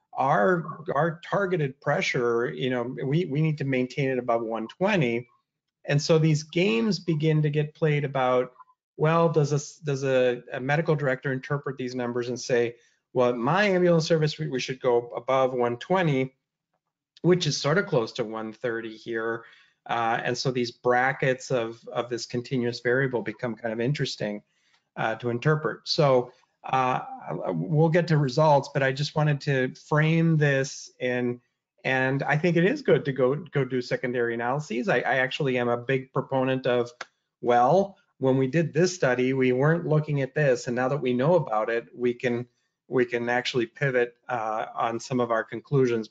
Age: 30-49